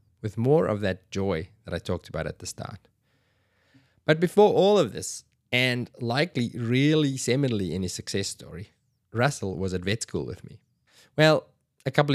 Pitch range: 95-125 Hz